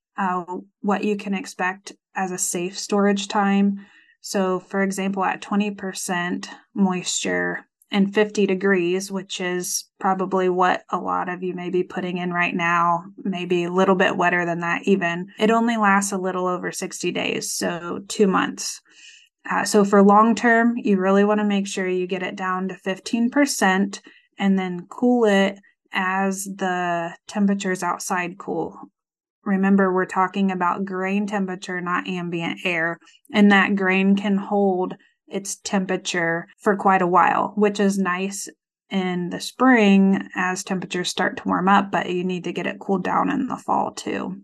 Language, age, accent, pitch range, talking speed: English, 20-39, American, 180-205 Hz, 165 wpm